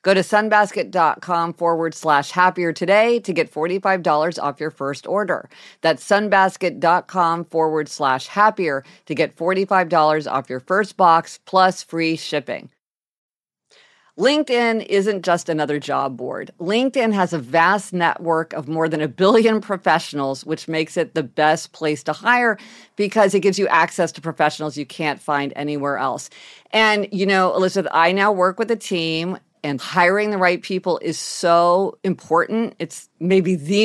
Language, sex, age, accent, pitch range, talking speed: English, female, 50-69, American, 155-200 Hz, 155 wpm